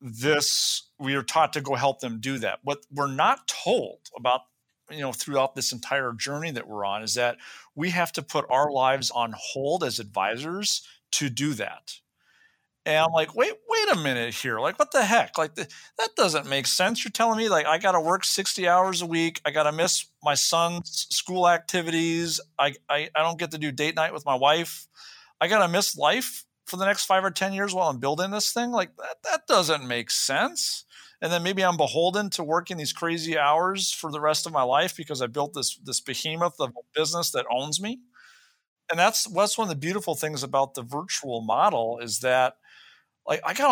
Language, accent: English, American